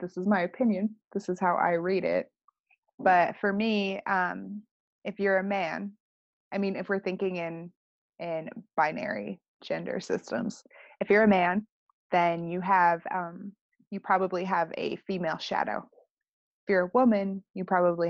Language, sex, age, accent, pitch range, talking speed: English, female, 20-39, American, 180-215 Hz, 160 wpm